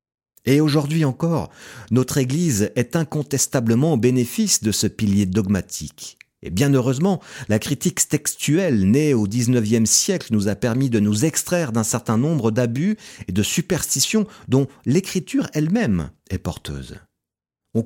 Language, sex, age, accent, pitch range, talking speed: French, male, 40-59, French, 100-135 Hz, 140 wpm